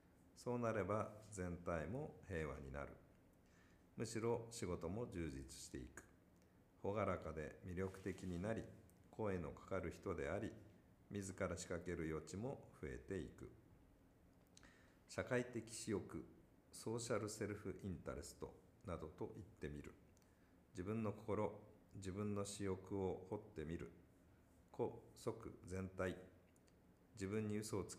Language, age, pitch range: Japanese, 50-69, 85-105 Hz